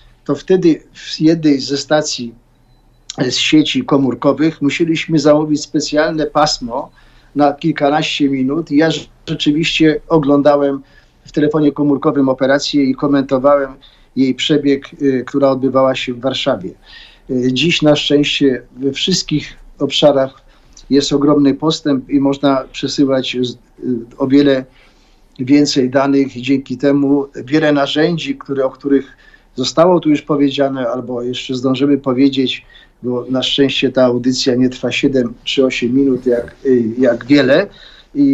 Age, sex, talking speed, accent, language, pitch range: 50-69, male, 125 wpm, native, Polish, 130-150 Hz